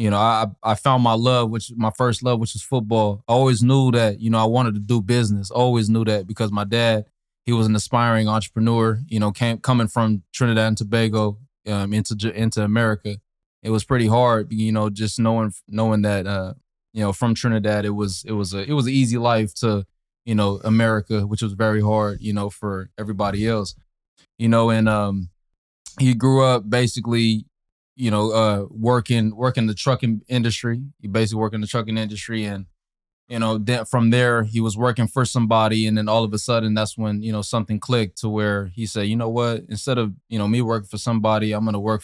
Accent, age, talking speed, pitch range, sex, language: American, 20-39, 215 wpm, 105-115 Hz, male, English